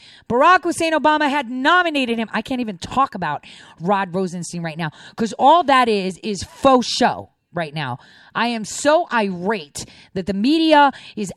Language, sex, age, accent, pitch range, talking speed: English, female, 30-49, American, 175-260 Hz, 170 wpm